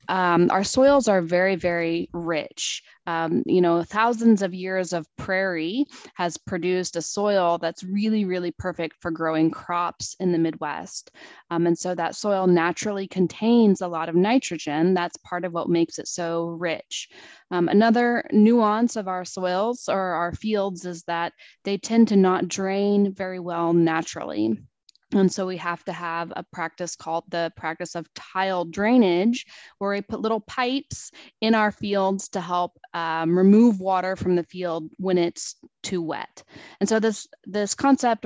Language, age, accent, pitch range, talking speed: English, 20-39, American, 170-205 Hz, 165 wpm